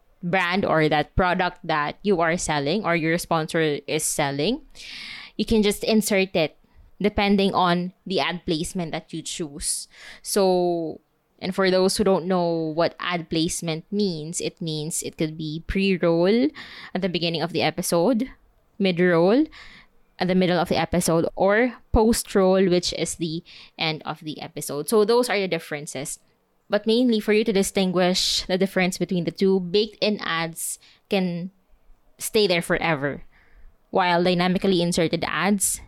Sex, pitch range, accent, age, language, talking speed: female, 160-200 Hz, Filipino, 20-39, English, 150 wpm